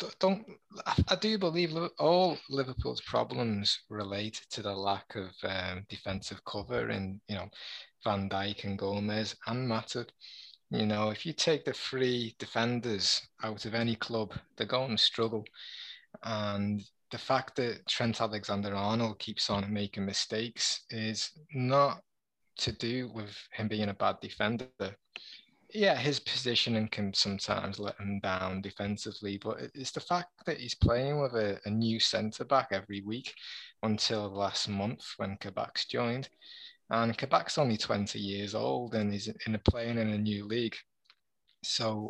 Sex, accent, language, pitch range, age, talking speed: male, British, French, 100-125 Hz, 20-39, 155 wpm